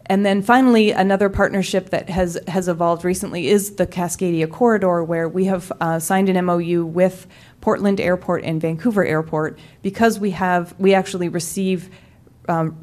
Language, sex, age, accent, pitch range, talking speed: English, female, 30-49, American, 165-195 Hz, 160 wpm